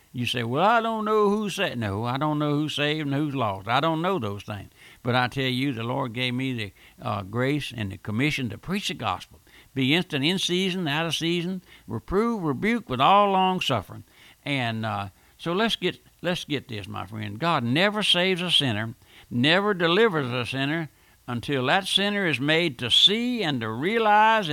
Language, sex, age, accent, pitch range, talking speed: English, male, 60-79, American, 110-150 Hz, 200 wpm